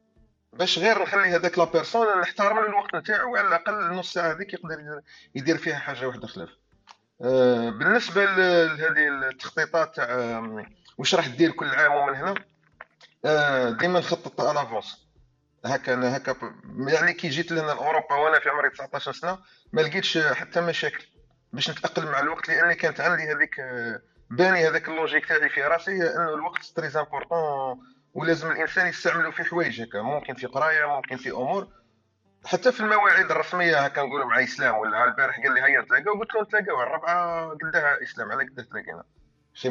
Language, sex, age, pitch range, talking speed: Arabic, male, 40-59, 130-185 Hz, 160 wpm